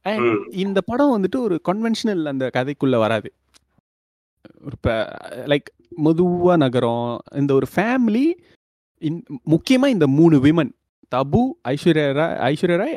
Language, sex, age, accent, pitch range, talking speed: Tamil, male, 30-49, native, 120-180 Hz, 115 wpm